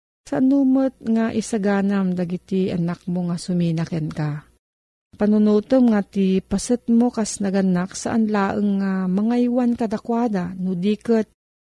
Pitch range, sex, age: 180-220 Hz, female, 40-59